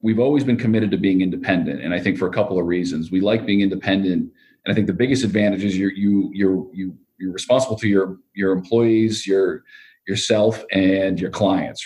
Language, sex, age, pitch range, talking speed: English, male, 40-59, 90-100 Hz, 205 wpm